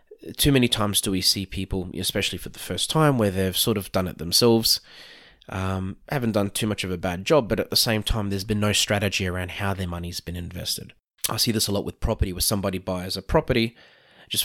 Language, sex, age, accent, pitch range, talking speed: English, male, 20-39, Australian, 95-110 Hz, 235 wpm